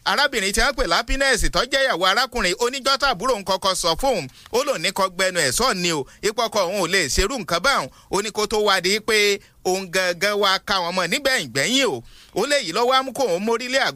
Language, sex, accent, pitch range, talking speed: English, male, Nigerian, 175-255 Hz, 175 wpm